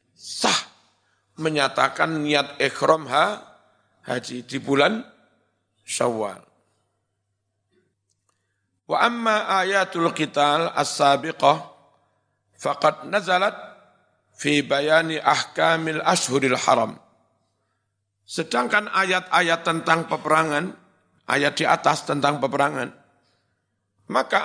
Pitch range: 125-165 Hz